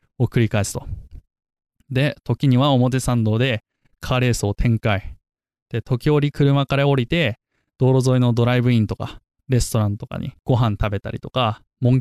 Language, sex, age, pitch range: Japanese, male, 20-39, 110-135 Hz